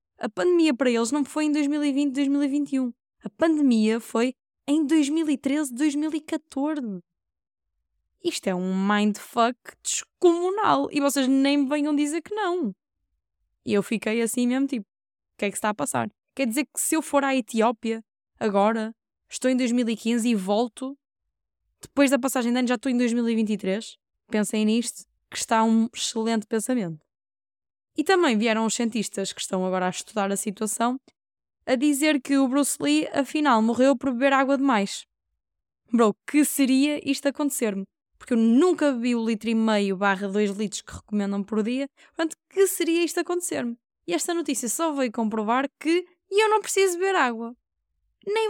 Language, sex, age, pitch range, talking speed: Portuguese, female, 10-29, 220-295 Hz, 165 wpm